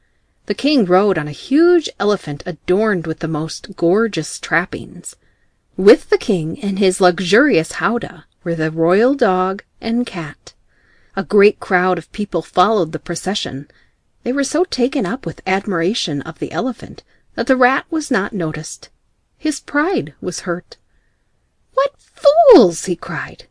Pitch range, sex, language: 170-280 Hz, female, Korean